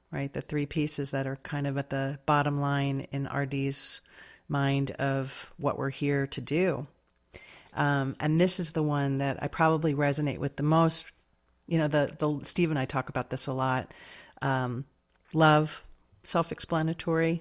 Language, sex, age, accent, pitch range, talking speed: English, female, 40-59, American, 135-150 Hz, 170 wpm